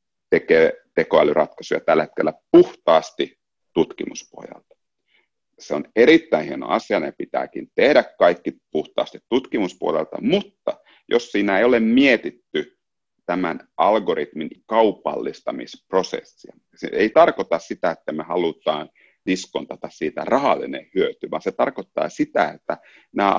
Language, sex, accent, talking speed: Finnish, male, native, 115 wpm